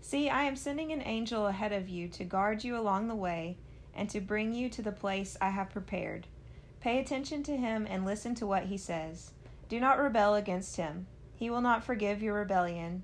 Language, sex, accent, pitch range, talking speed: English, female, American, 185-220 Hz, 210 wpm